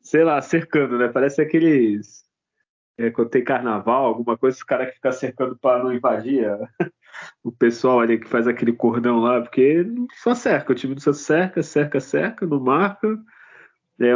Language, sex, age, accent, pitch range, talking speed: Portuguese, male, 20-39, Brazilian, 125-175 Hz, 175 wpm